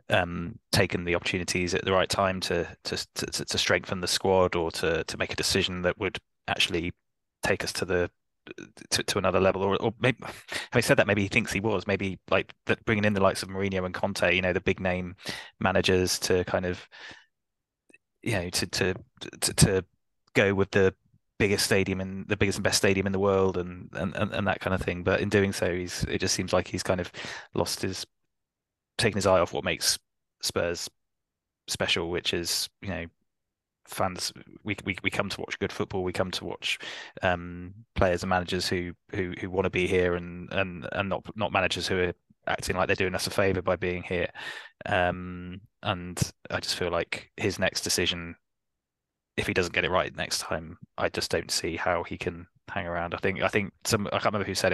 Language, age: English, 20-39